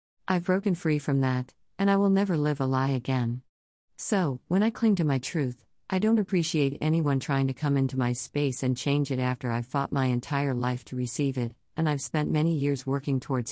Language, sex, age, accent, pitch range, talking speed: English, female, 50-69, American, 130-165 Hz, 215 wpm